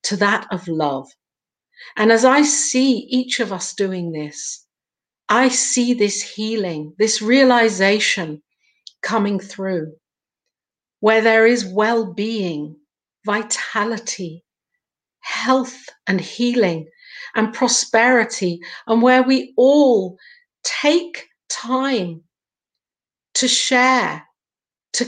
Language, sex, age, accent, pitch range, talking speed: English, female, 50-69, British, 190-245 Hz, 100 wpm